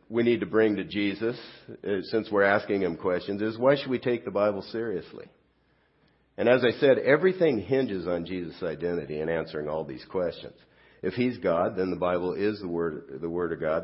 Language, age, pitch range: English, 50-69, 90-120 Hz